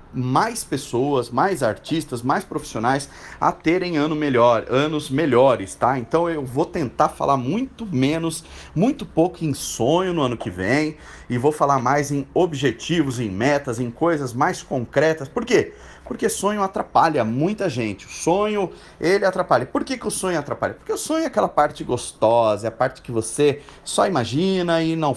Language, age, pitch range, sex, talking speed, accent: Portuguese, 30-49, 120-180 Hz, male, 170 wpm, Brazilian